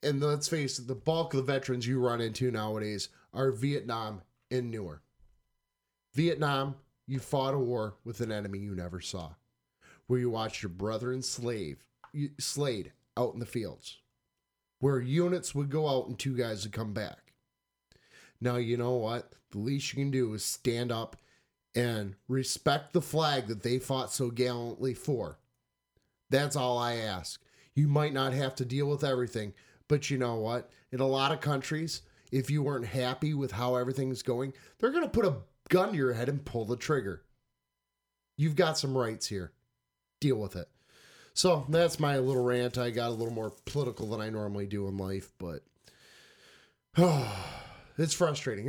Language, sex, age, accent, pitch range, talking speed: English, male, 30-49, American, 110-140 Hz, 175 wpm